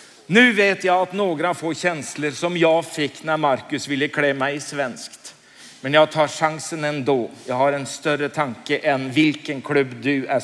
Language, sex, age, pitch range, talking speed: Swedish, male, 60-79, 135-160 Hz, 180 wpm